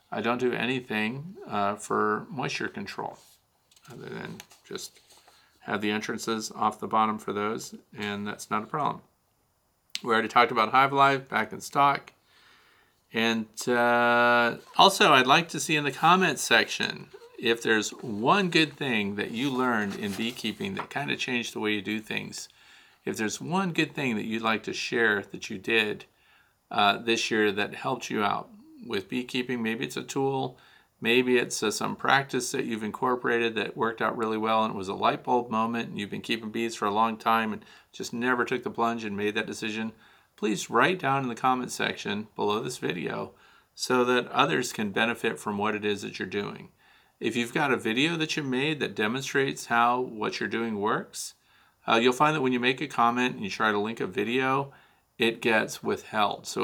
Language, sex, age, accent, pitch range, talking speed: English, male, 40-59, American, 110-130 Hz, 195 wpm